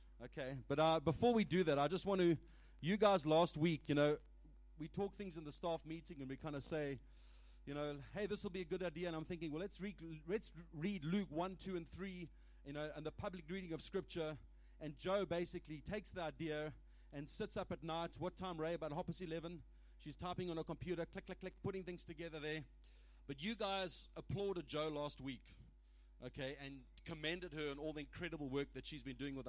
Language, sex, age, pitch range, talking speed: English, male, 30-49, 135-180 Hz, 220 wpm